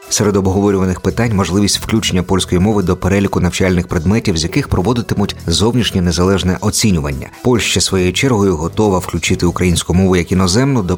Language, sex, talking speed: Polish, male, 150 wpm